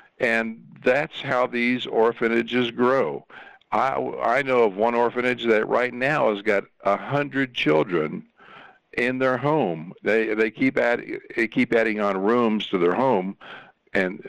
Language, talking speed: English, 145 wpm